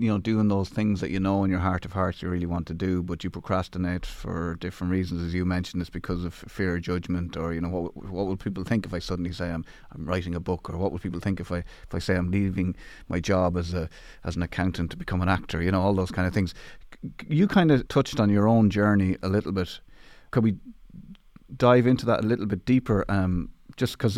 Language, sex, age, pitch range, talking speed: English, male, 30-49, 90-110 Hz, 255 wpm